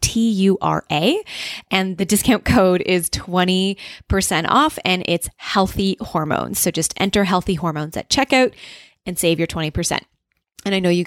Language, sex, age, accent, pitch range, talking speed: English, female, 20-39, American, 160-200 Hz, 145 wpm